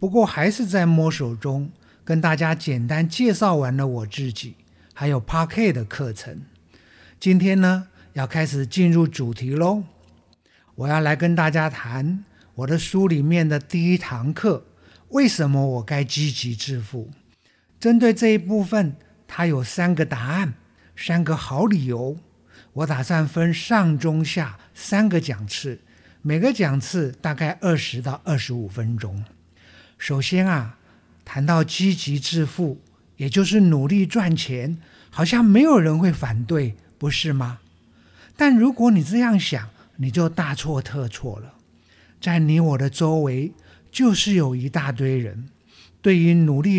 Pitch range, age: 125-180 Hz, 50-69